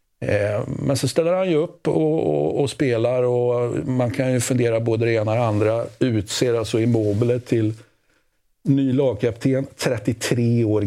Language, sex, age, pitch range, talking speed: Swedish, male, 50-69, 95-115 Hz, 160 wpm